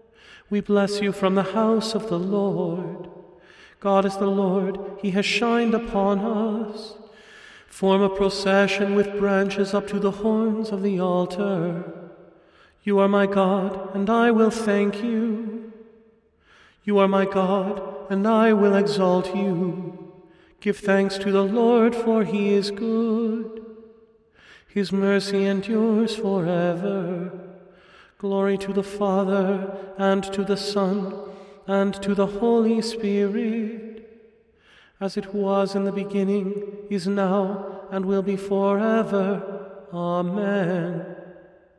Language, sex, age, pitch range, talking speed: English, male, 40-59, 180-205 Hz, 125 wpm